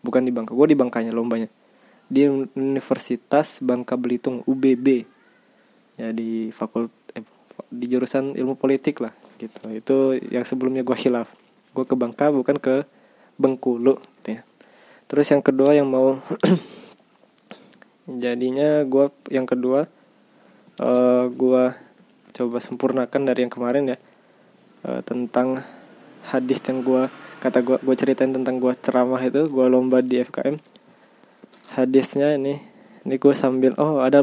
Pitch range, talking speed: 125-140 Hz, 130 wpm